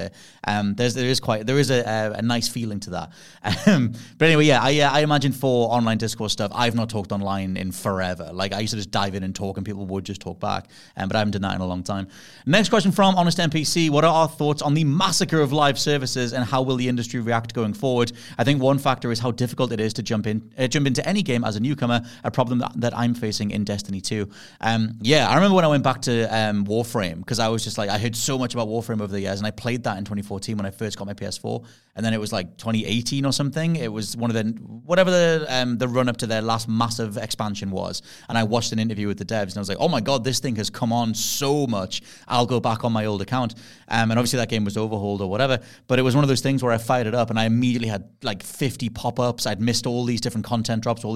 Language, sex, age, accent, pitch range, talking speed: English, male, 30-49, British, 105-130 Hz, 280 wpm